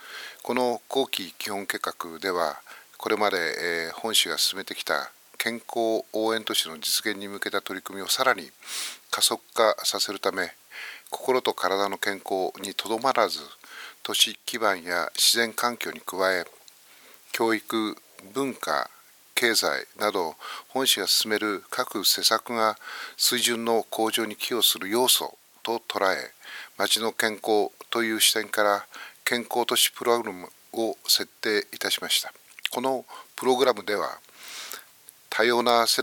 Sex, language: male, Japanese